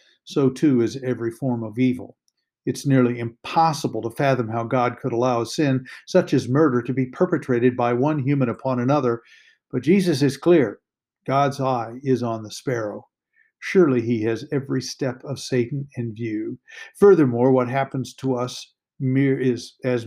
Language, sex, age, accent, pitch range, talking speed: English, male, 50-69, American, 120-150 Hz, 165 wpm